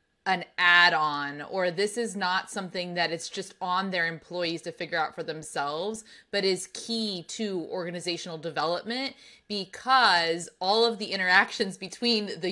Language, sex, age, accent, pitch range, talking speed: English, female, 20-39, American, 175-215 Hz, 150 wpm